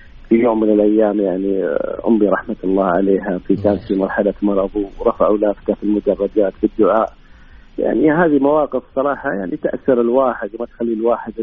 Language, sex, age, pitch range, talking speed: Arabic, male, 40-59, 105-145 Hz, 140 wpm